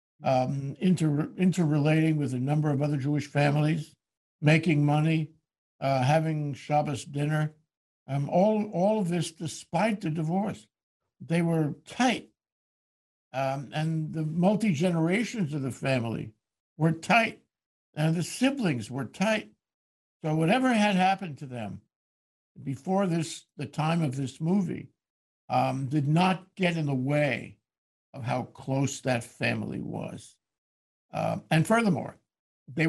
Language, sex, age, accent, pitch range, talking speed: English, male, 60-79, American, 130-170 Hz, 130 wpm